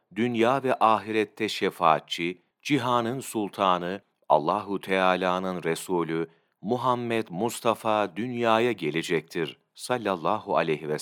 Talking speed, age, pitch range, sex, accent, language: 85 wpm, 40-59, 90-120 Hz, male, native, Turkish